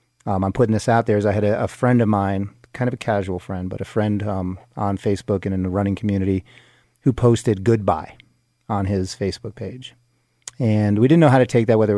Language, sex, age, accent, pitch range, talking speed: English, male, 30-49, American, 100-115 Hz, 235 wpm